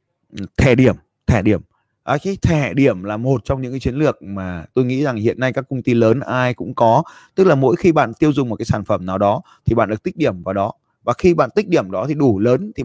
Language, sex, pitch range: Vietnamese, male, 110-140 Hz